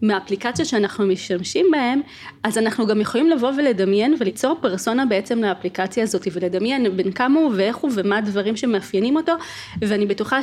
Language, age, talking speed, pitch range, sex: English, 20-39, 155 wpm, 195-245 Hz, female